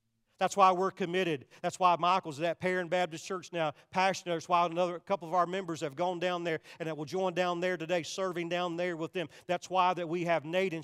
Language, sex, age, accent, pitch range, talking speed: English, male, 40-59, American, 160-195 Hz, 240 wpm